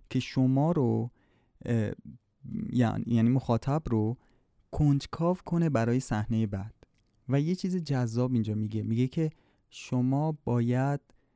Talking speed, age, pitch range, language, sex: 110 wpm, 30-49, 110-135 Hz, Persian, male